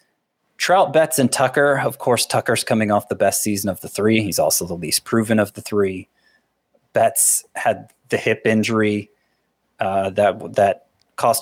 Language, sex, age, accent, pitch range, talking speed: English, male, 20-39, American, 100-125 Hz, 170 wpm